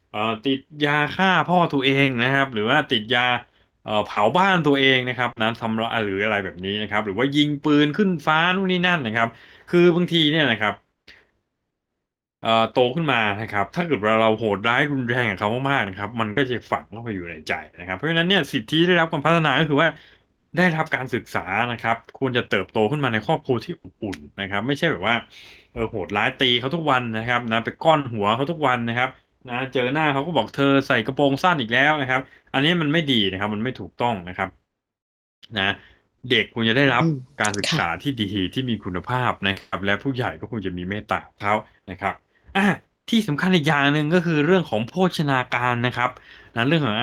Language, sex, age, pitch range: Thai, male, 20-39, 105-145 Hz